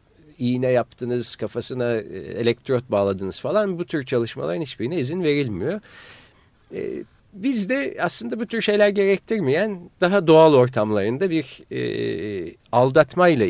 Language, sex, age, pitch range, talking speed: Turkish, male, 50-69, 110-180 Hz, 105 wpm